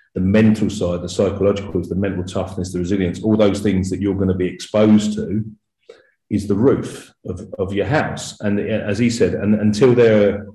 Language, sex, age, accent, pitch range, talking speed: English, male, 40-59, British, 95-110 Hz, 200 wpm